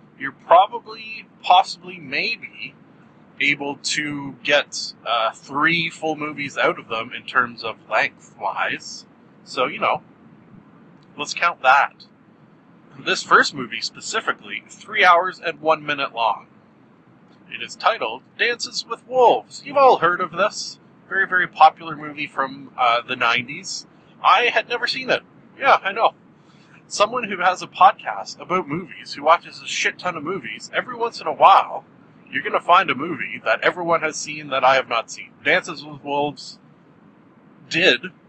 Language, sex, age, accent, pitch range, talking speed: English, male, 30-49, American, 145-195 Hz, 155 wpm